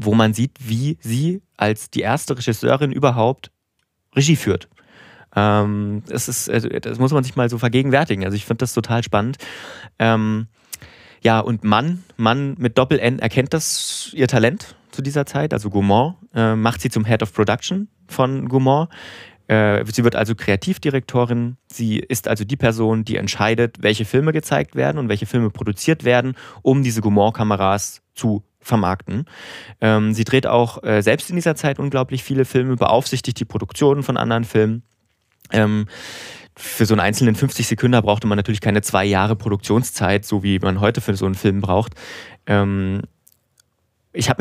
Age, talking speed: 30-49, 160 wpm